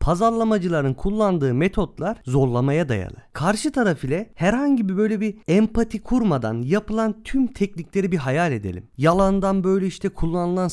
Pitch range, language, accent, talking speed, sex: 140-200 Hz, Turkish, native, 135 wpm, male